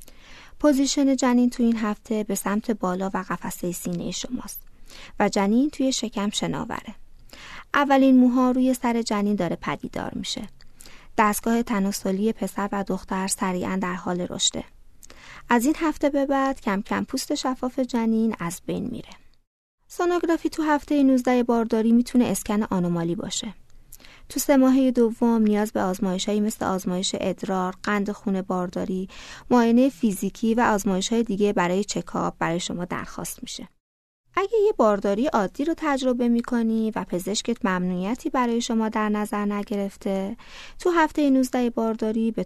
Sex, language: female, Persian